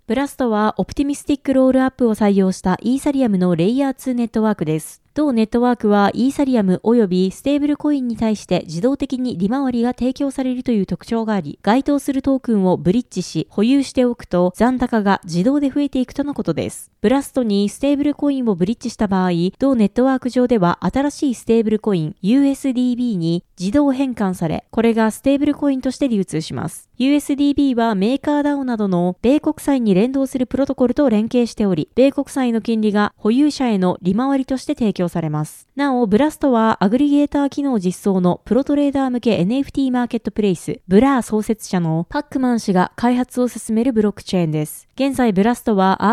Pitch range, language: 200-270 Hz, Japanese